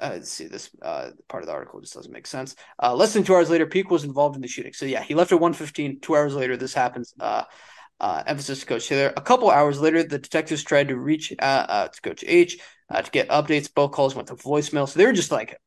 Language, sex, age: English, male, 20-39